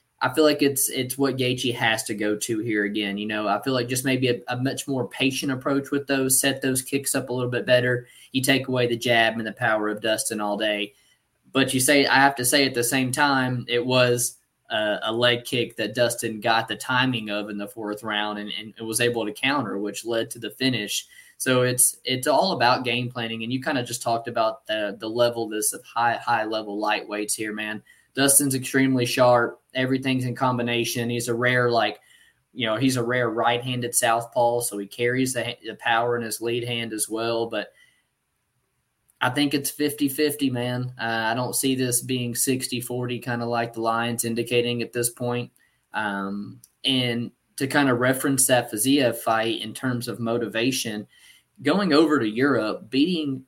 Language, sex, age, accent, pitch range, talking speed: English, male, 20-39, American, 115-130 Hz, 205 wpm